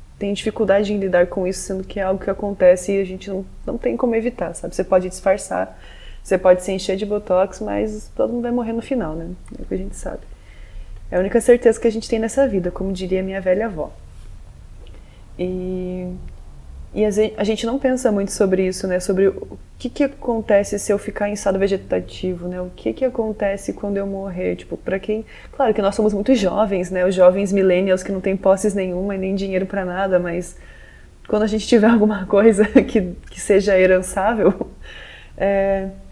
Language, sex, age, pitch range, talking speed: Portuguese, female, 20-39, 180-215 Hz, 205 wpm